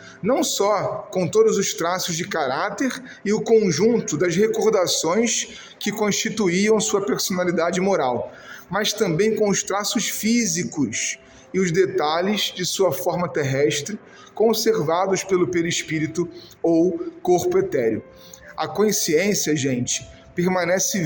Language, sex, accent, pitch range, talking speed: Portuguese, male, Brazilian, 170-215 Hz, 115 wpm